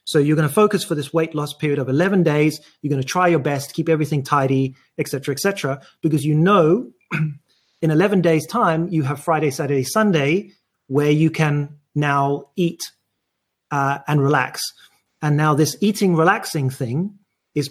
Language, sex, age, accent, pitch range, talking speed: English, male, 30-49, British, 135-165 Hz, 180 wpm